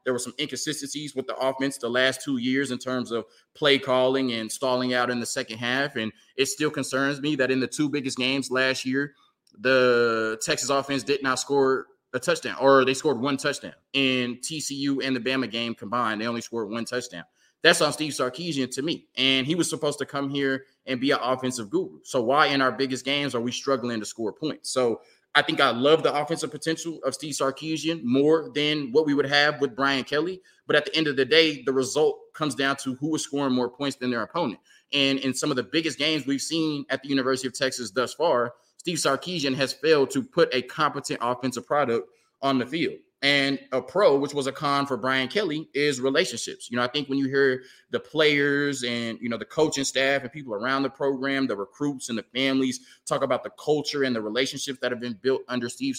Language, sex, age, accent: English, male, 20-39, American